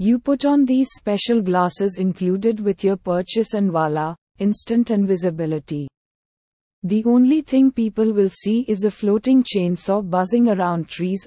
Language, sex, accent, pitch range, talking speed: English, female, Indian, 180-220 Hz, 145 wpm